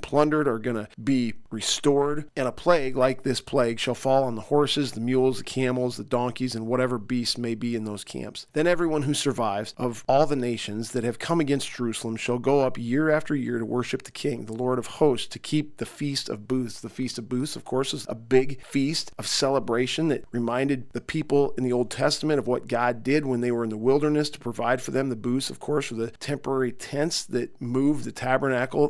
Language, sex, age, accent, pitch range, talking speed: English, male, 40-59, American, 125-145 Hz, 230 wpm